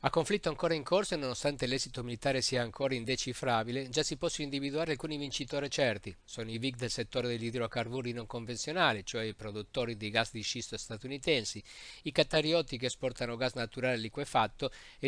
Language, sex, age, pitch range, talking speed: Italian, male, 50-69, 115-135 Hz, 175 wpm